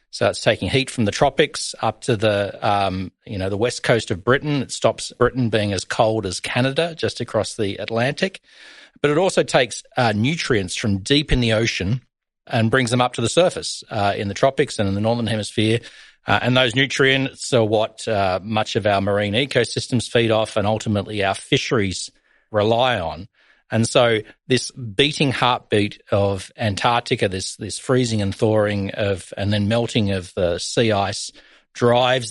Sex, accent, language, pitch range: male, Australian, English, 105-125 Hz